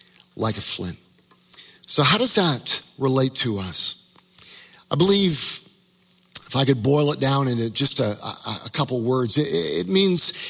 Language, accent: English, American